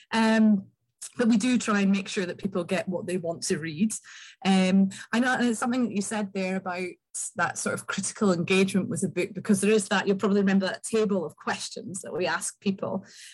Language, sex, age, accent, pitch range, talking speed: English, female, 30-49, British, 185-210 Hz, 220 wpm